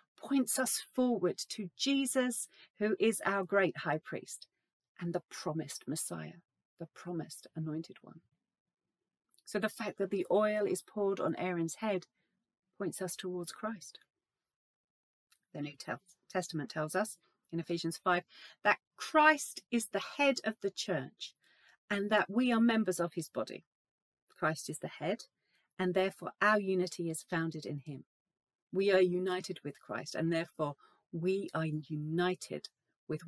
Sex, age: female, 40-59